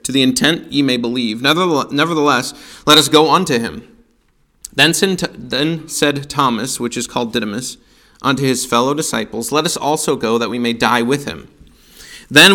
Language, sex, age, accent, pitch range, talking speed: English, male, 30-49, American, 120-170 Hz, 165 wpm